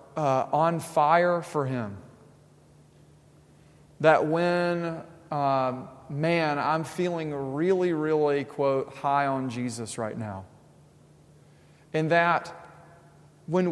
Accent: American